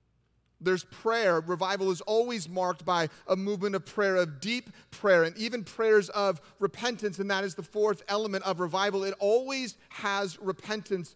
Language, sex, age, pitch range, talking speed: English, male, 30-49, 180-220 Hz, 165 wpm